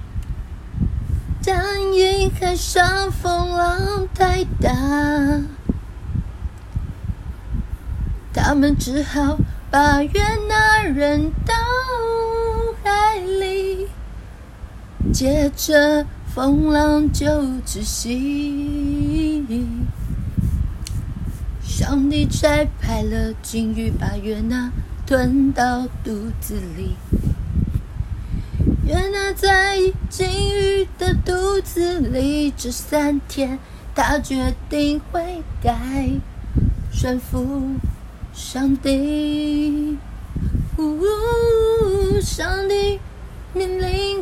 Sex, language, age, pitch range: female, Chinese, 30-49, 260-375 Hz